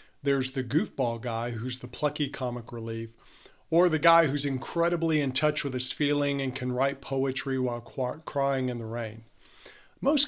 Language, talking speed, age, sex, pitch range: English, 170 wpm, 50-69, male, 125-160 Hz